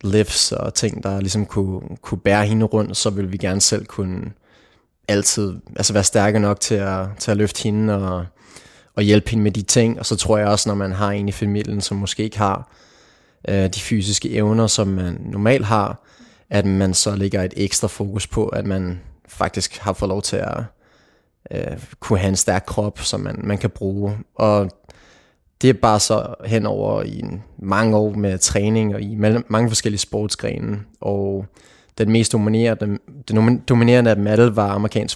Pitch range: 100-110 Hz